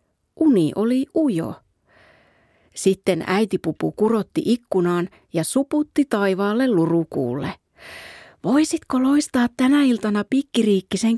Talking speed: 85 wpm